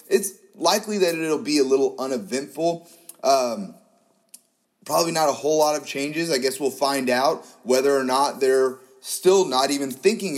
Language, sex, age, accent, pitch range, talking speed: English, male, 30-49, American, 130-195 Hz, 170 wpm